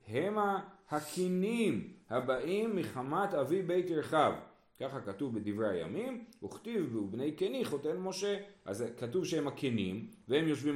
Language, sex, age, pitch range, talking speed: Hebrew, male, 40-59, 120-170 Hz, 125 wpm